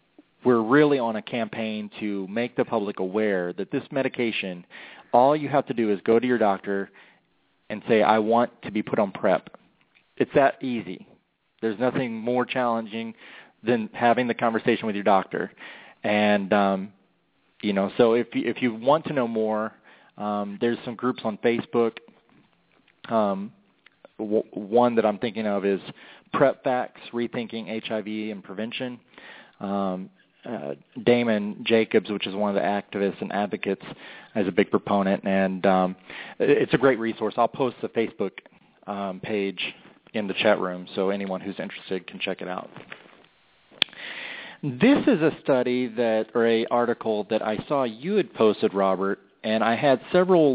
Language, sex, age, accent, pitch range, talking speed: English, male, 30-49, American, 100-120 Hz, 165 wpm